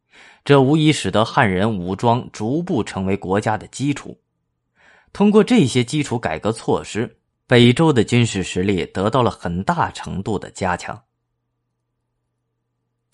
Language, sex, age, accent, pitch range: Chinese, male, 30-49, native, 100-135 Hz